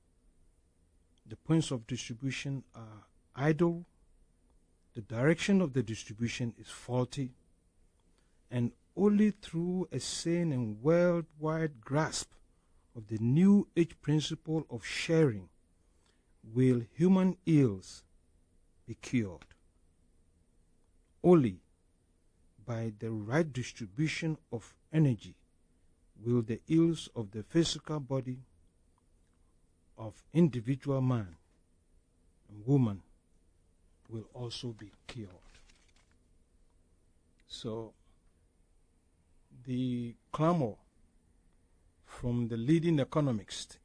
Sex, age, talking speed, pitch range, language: male, 50-69, 85 wpm, 85-135 Hz, English